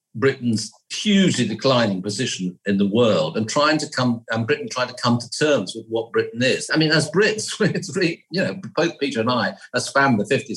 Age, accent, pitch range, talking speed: 50-69, British, 115-165 Hz, 210 wpm